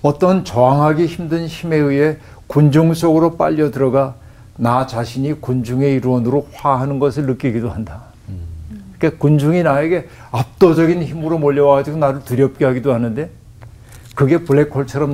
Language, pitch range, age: Korean, 115-145 Hz, 50-69